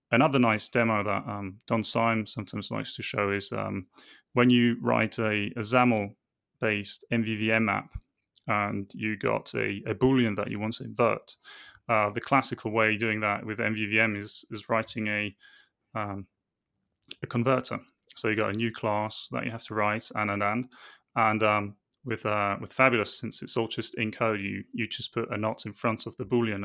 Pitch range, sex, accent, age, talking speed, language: 105-125 Hz, male, British, 20-39, 195 wpm, English